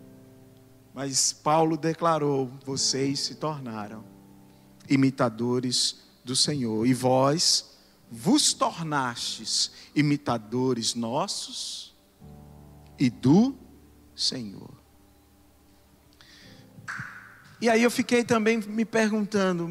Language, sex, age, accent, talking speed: Portuguese, male, 50-69, Brazilian, 75 wpm